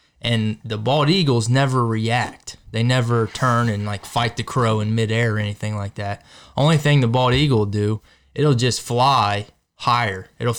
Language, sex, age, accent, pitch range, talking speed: English, male, 20-39, American, 105-125 Hz, 180 wpm